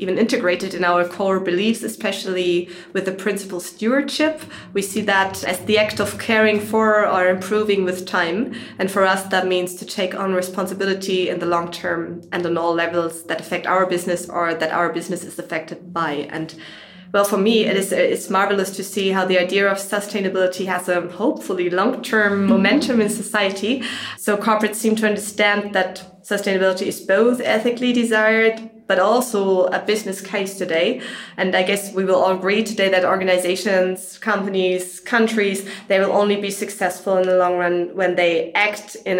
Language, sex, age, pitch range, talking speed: English, female, 20-39, 180-215 Hz, 180 wpm